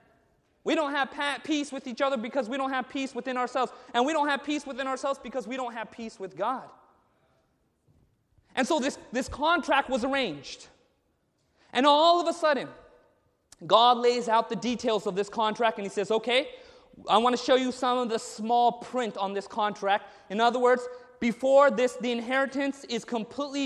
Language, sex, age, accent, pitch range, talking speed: English, male, 30-49, American, 240-320 Hz, 190 wpm